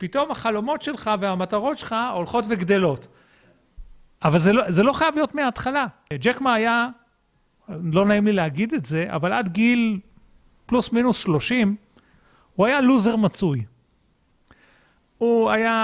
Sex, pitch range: male, 170-225 Hz